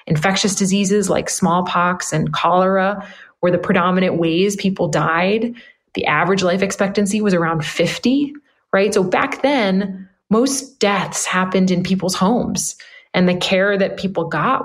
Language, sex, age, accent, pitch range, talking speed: English, female, 30-49, American, 175-225 Hz, 145 wpm